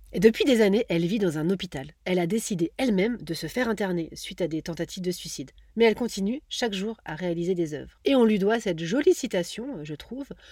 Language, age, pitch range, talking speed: French, 40-59, 180-245 Hz, 235 wpm